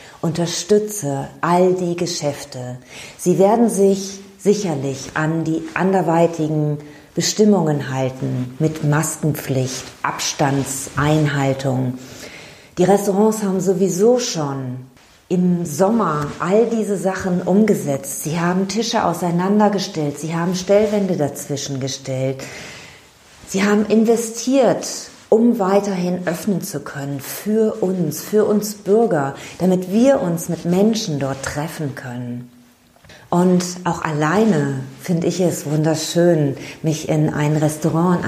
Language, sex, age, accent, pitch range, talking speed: German, female, 40-59, German, 140-185 Hz, 110 wpm